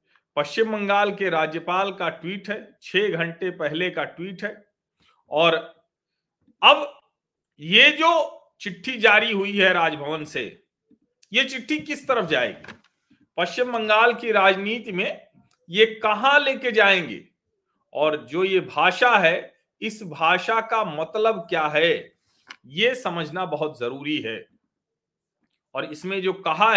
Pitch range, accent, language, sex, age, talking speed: 175-235 Hz, native, Hindi, male, 40-59, 130 wpm